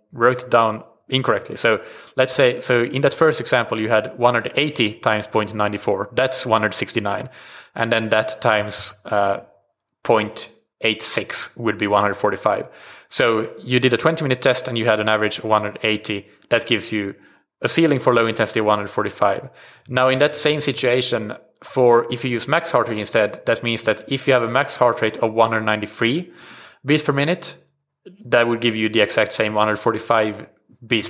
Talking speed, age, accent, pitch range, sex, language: 170 wpm, 20-39, Norwegian, 110-135 Hz, male, English